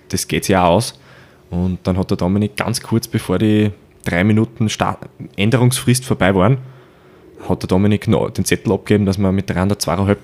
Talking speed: 190 wpm